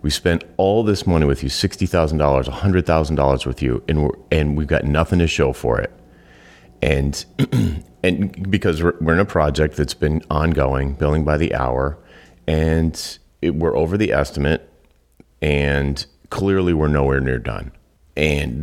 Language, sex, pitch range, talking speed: English, male, 70-90 Hz, 160 wpm